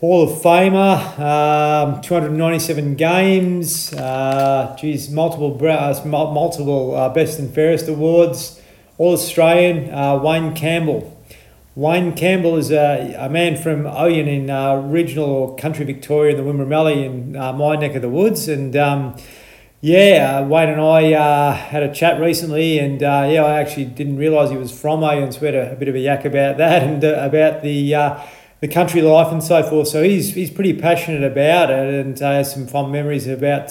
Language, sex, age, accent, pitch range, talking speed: English, male, 40-59, Australian, 140-160 Hz, 185 wpm